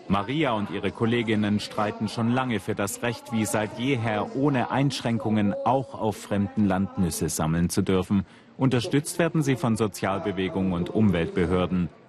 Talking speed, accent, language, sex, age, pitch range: 150 wpm, German, German, male, 40-59, 95-125 Hz